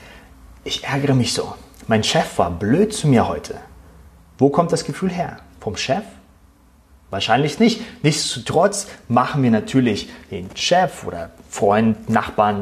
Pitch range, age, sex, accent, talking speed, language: 90-140 Hz, 30-49, male, German, 140 wpm, German